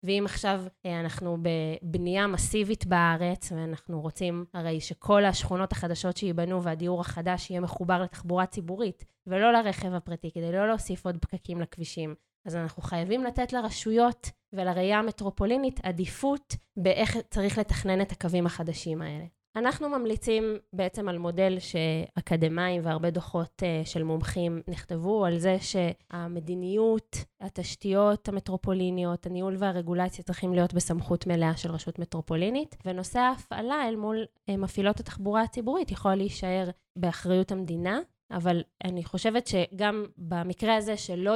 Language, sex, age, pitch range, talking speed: Hebrew, female, 20-39, 175-205 Hz, 125 wpm